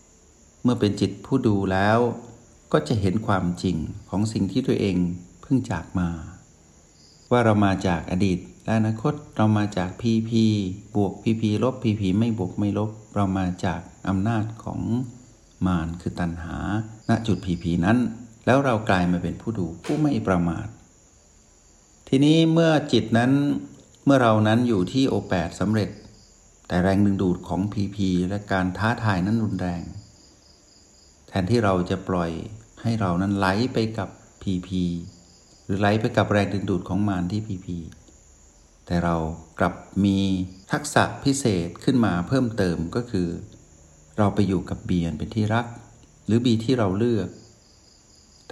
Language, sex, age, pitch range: Thai, male, 60-79, 90-110 Hz